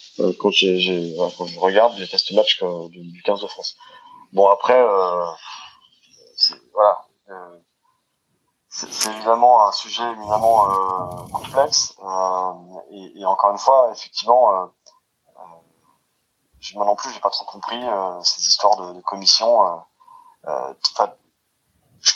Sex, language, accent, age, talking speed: male, French, French, 20-39, 145 wpm